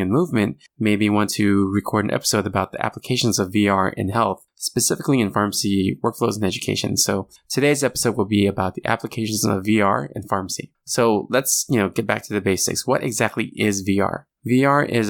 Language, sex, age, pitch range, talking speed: English, male, 20-39, 100-120 Hz, 185 wpm